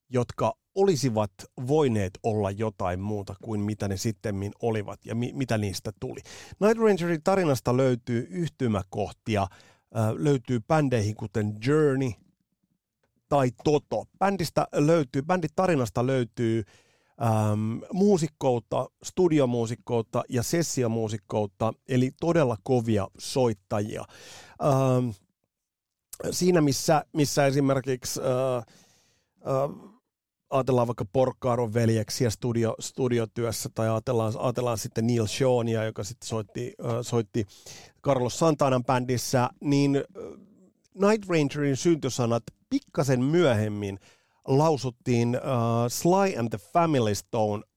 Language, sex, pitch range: Finnish, male, 110-140 Hz